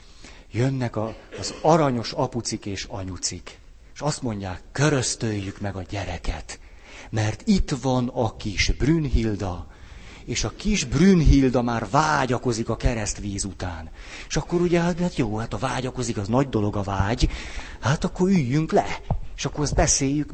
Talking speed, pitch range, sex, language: 150 wpm, 95-135 Hz, male, Hungarian